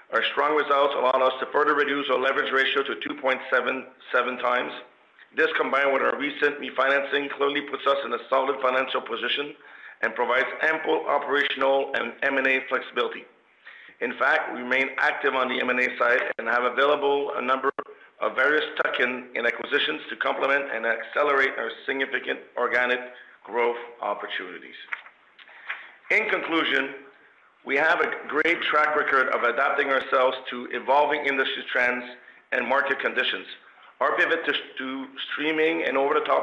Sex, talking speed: male, 145 wpm